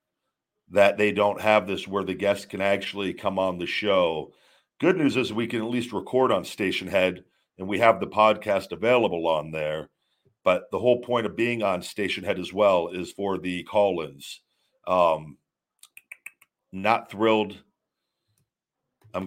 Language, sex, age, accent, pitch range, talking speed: English, male, 50-69, American, 95-115 Hz, 160 wpm